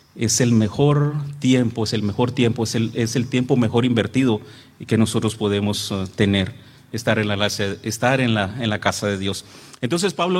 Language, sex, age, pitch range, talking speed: English, male, 40-59, 120-145 Hz, 155 wpm